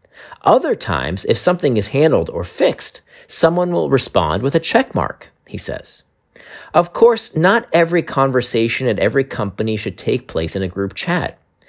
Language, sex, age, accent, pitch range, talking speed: English, male, 40-59, American, 105-155 Hz, 165 wpm